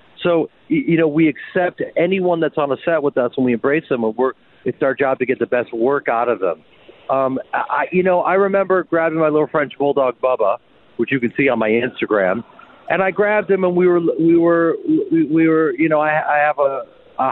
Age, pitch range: 50-69, 120-160 Hz